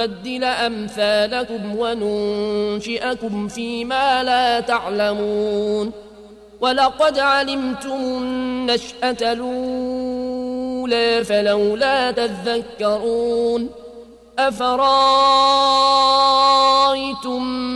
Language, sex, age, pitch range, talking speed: Arabic, male, 30-49, 210-255 Hz, 45 wpm